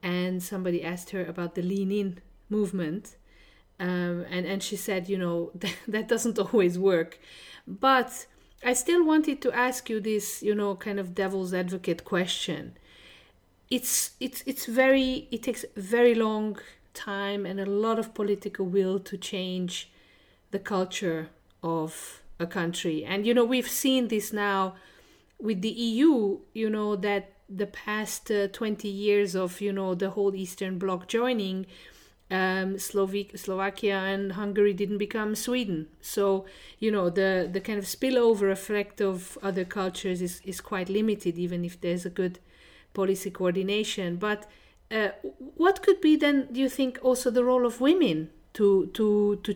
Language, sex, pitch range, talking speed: English, female, 185-225 Hz, 160 wpm